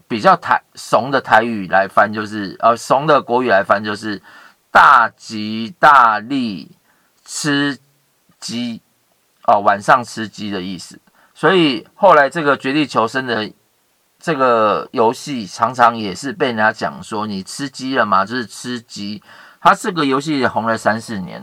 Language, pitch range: Chinese, 115-155 Hz